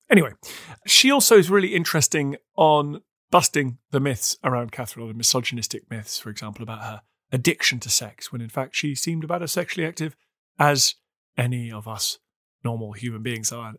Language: English